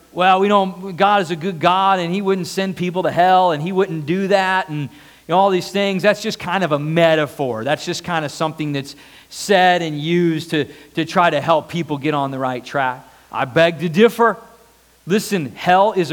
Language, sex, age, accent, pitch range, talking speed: English, male, 40-59, American, 165-210 Hz, 205 wpm